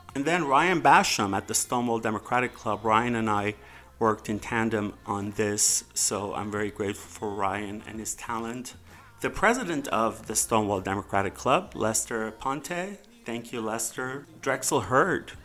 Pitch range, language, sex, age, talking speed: 105-125 Hz, English, male, 40-59, 155 wpm